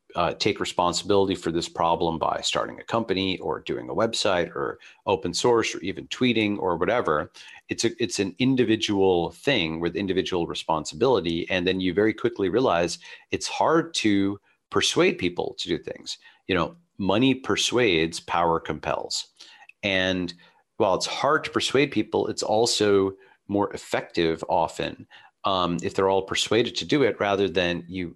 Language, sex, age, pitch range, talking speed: English, male, 40-59, 85-105 Hz, 155 wpm